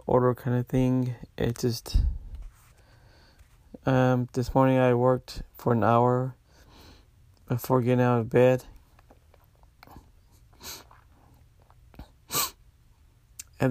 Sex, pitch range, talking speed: male, 105-125 Hz, 90 wpm